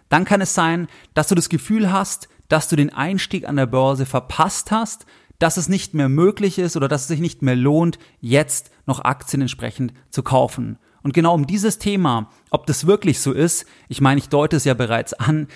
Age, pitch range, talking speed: 30-49, 135-175 Hz, 210 wpm